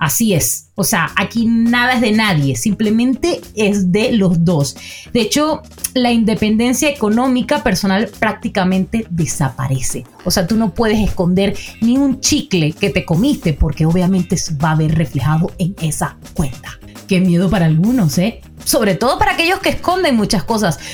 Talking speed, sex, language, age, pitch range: 160 wpm, female, Spanish, 30-49, 185-270 Hz